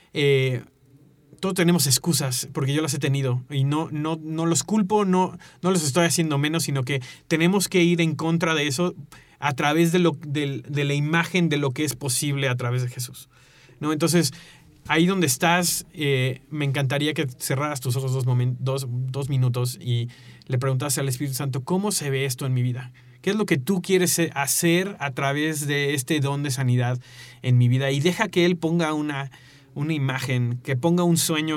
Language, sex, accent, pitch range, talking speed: Spanish, male, Mexican, 135-170 Hz, 190 wpm